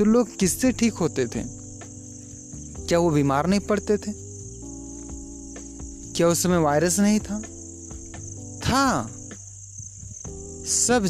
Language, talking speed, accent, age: Hindi, 110 wpm, native, 30-49